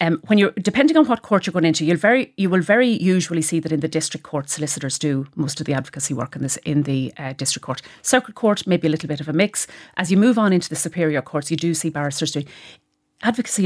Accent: Irish